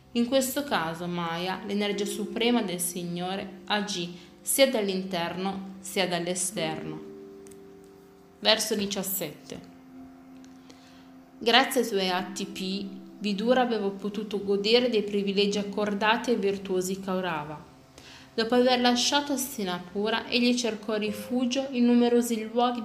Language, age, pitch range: Italian, 20-39, 180-220 Hz